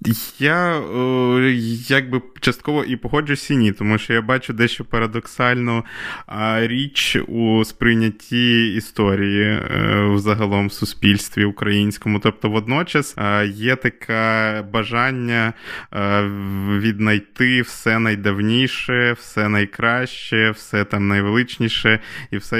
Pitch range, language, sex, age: 105-120 Hz, Ukrainian, male, 20-39